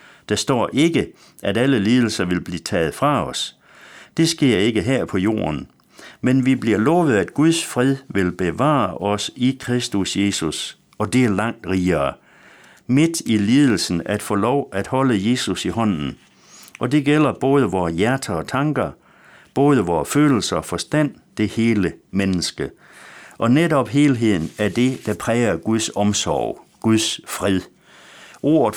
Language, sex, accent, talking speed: Danish, male, native, 155 wpm